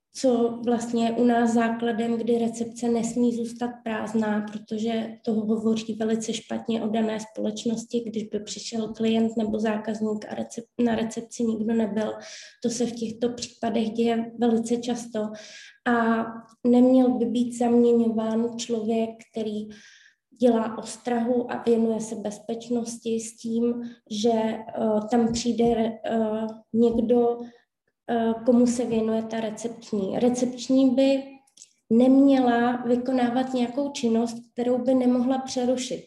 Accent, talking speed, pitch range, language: native, 125 wpm, 225-240 Hz, Czech